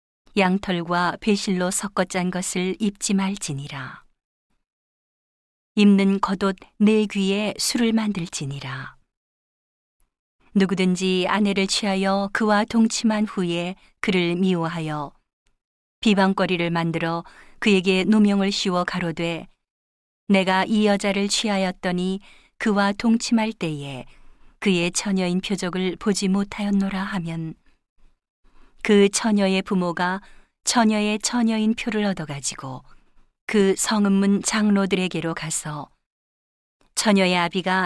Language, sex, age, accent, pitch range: Korean, female, 40-59, native, 175-205 Hz